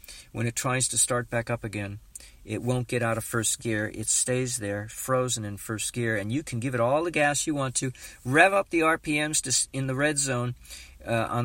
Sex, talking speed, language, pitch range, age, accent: male, 225 wpm, English, 115-155 Hz, 50-69, American